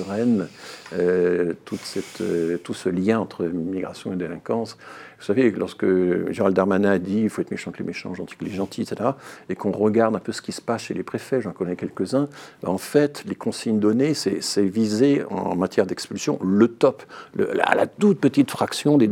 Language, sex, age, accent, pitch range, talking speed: French, male, 50-69, French, 95-125 Hz, 200 wpm